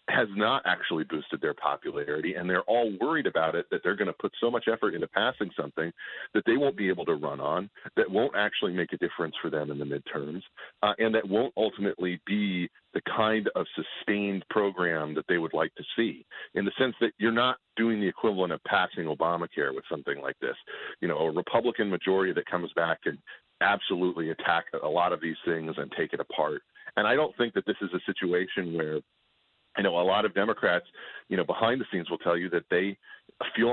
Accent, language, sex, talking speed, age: American, English, male, 215 wpm, 40-59